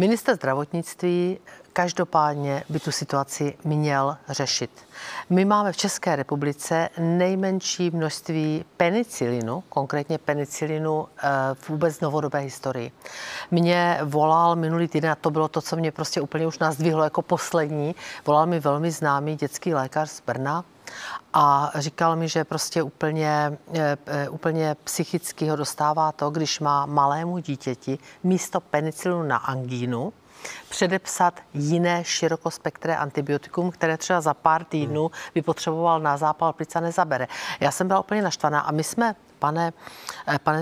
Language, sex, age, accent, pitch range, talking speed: Czech, female, 50-69, native, 145-175 Hz, 130 wpm